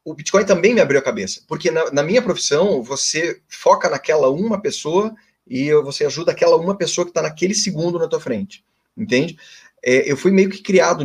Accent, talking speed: Brazilian, 200 wpm